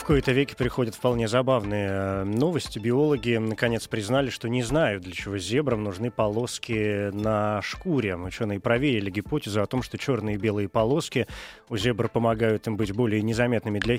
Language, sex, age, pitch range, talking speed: Russian, male, 20-39, 100-125 Hz, 165 wpm